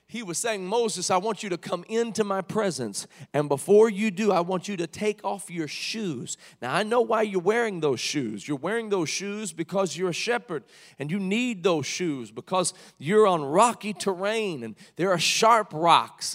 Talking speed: 200 wpm